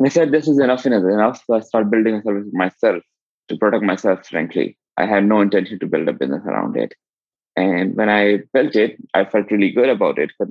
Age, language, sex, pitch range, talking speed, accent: 20-39, English, male, 100-115 Hz, 230 wpm, Indian